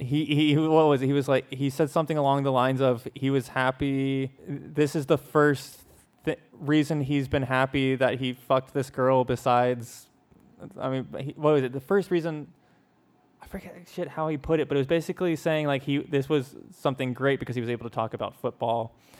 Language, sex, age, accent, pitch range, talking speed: English, male, 20-39, American, 120-140 Hz, 215 wpm